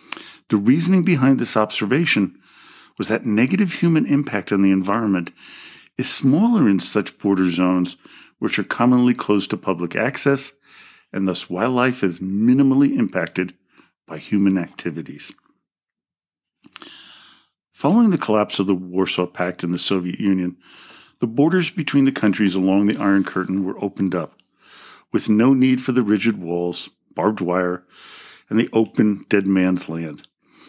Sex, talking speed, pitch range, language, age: male, 145 wpm, 95-130 Hz, English, 50-69